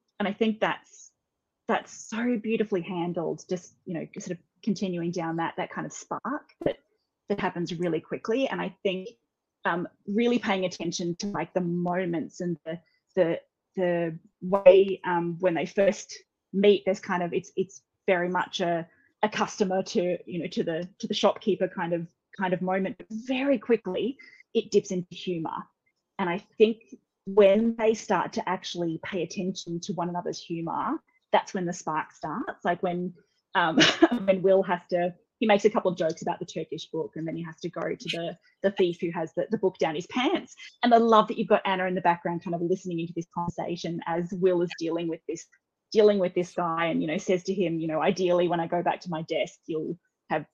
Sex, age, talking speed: female, 20-39, 210 wpm